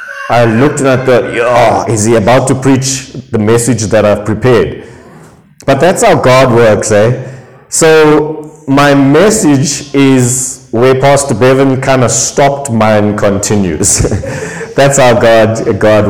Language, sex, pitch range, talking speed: English, male, 115-150 Hz, 140 wpm